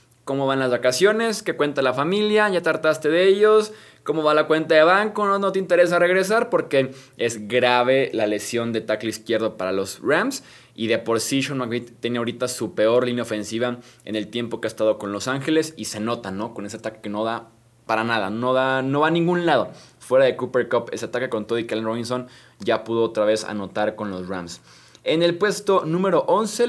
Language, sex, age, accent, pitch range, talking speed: Spanish, male, 20-39, Mexican, 115-160 Hz, 220 wpm